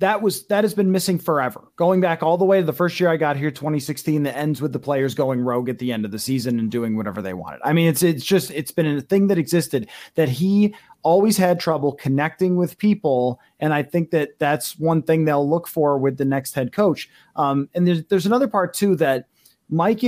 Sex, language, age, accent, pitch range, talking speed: male, English, 30-49, American, 150-190 Hz, 240 wpm